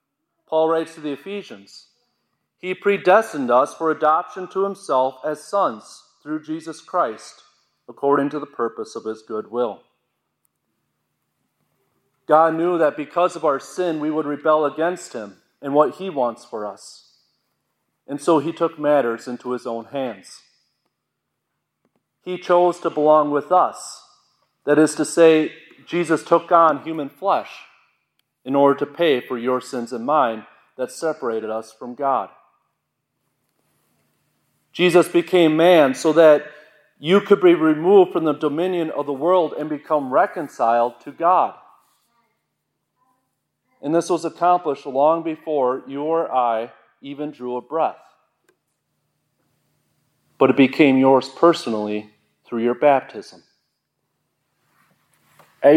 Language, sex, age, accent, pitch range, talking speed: English, male, 40-59, American, 135-170 Hz, 130 wpm